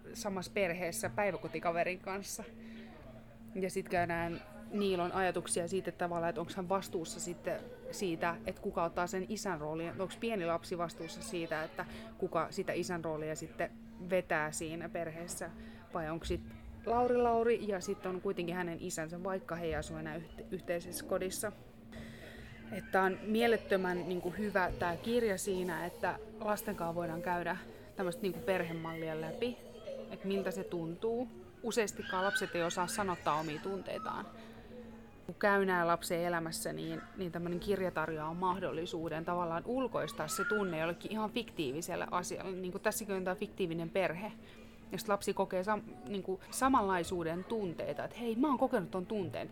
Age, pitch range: 30-49, 170-210 Hz